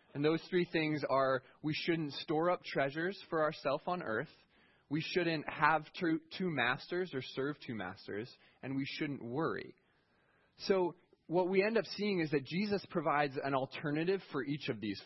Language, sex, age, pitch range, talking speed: English, male, 20-39, 125-165 Hz, 175 wpm